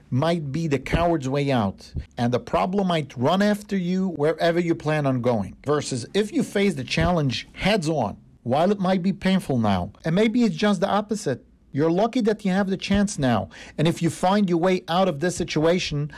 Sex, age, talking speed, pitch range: male, 50-69, 205 wpm, 130-185 Hz